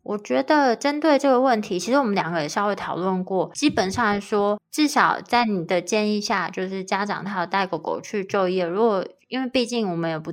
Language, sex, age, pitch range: Chinese, female, 20-39, 180-225 Hz